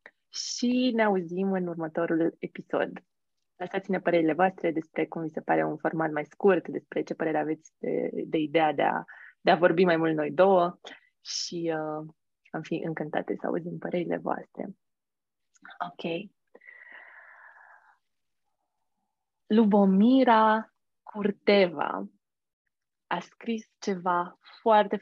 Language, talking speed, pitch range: Romanian, 120 wpm, 165-210 Hz